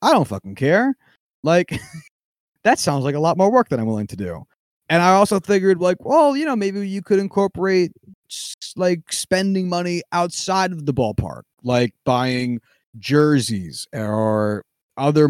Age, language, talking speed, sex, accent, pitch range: 30-49, English, 160 wpm, male, American, 120-170 Hz